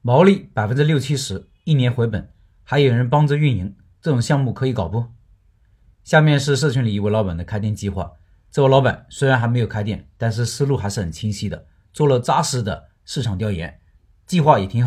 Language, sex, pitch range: Chinese, male, 105-150 Hz